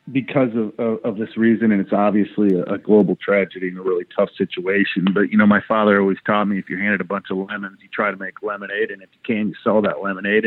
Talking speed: 265 wpm